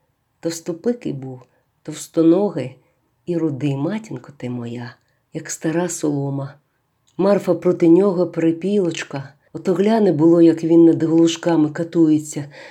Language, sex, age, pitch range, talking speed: Ukrainian, female, 40-59, 140-170 Hz, 115 wpm